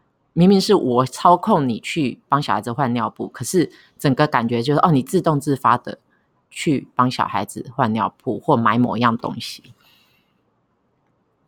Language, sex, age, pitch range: Chinese, female, 30-49, 120-160 Hz